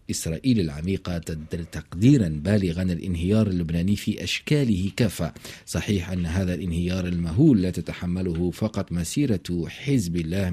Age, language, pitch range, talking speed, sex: 50-69, Arabic, 85-110 Hz, 120 wpm, male